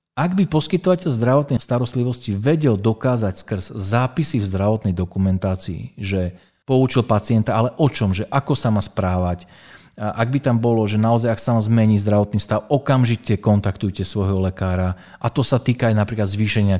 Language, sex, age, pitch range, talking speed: Slovak, male, 40-59, 95-125 Hz, 170 wpm